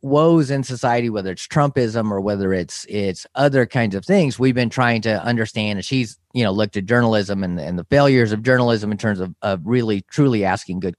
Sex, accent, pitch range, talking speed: male, American, 100-125 Hz, 220 wpm